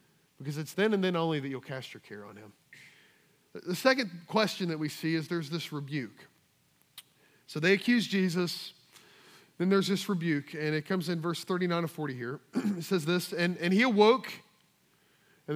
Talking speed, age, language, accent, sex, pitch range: 185 wpm, 40-59, English, American, male, 155-205 Hz